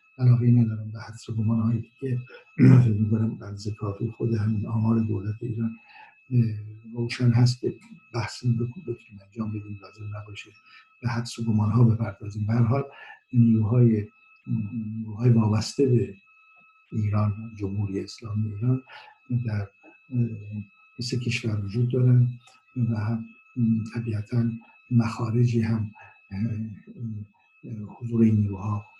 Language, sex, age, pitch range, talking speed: Persian, male, 60-79, 110-125 Hz, 105 wpm